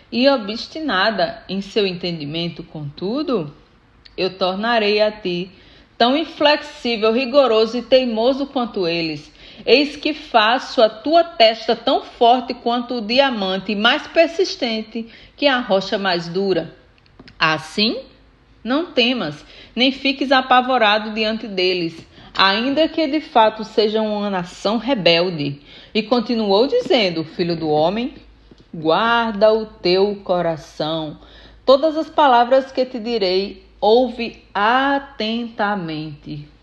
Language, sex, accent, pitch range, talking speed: Portuguese, female, Brazilian, 180-255 Hz, 115 wpm